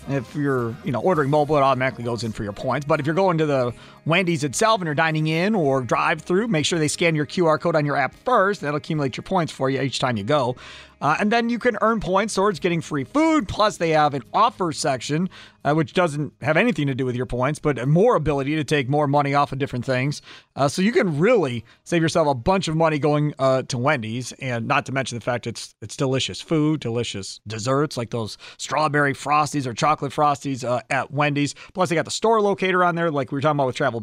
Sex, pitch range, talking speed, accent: male, 130-170 Hz, 250 wpm, American